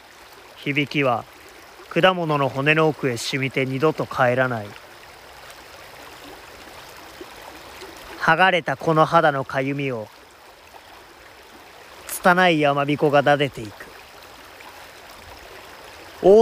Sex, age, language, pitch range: male, 30-49, Japanese, 135-170 Hz